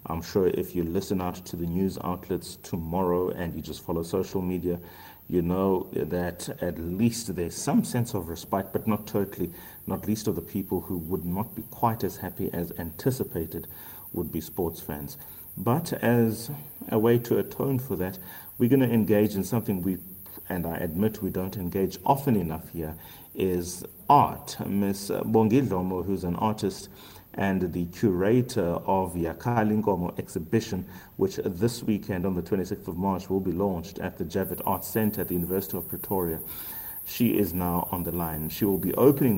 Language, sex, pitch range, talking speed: English, male, 85-105 Hz, 175 wpm